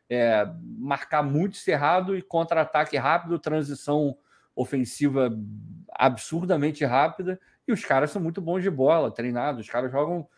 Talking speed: 135 wpm